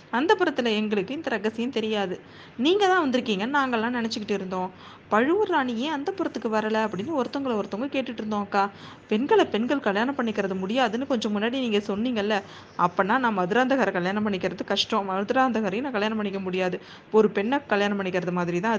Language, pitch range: Tamil, 190-250 Hz